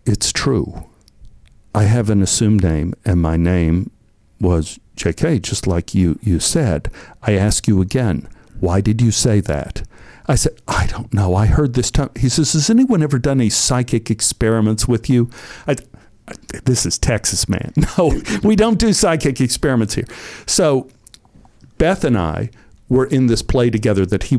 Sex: male